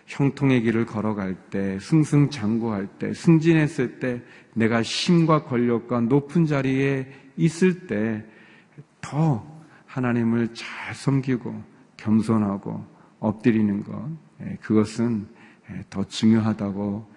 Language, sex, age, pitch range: Korean, male, 40-59, 105-135 Hz